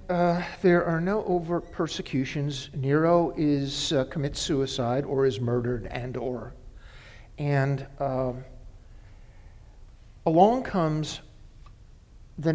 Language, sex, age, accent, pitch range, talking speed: English, male, 50-69, American, 110-165 Hz, 105 wpm